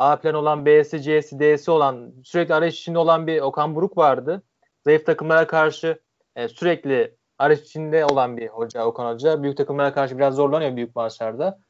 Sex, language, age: male, Turkish, 30-49